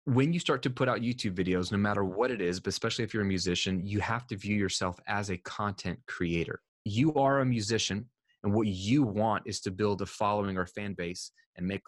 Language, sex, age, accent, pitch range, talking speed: English, male, 20-39, American, 95-115 Hz, 230 wpm